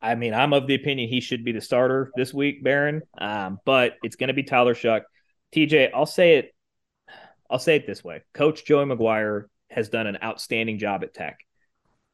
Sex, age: male, 30-49